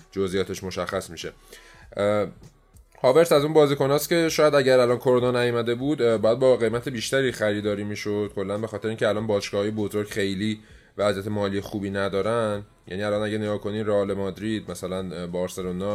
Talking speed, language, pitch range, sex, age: 155 wpm, Persian, 95-115 Hz, male, 20-39